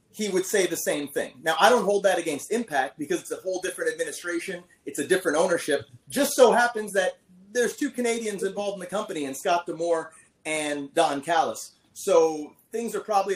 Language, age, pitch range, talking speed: English, 30-49, 160-205 Hz, 200 wpm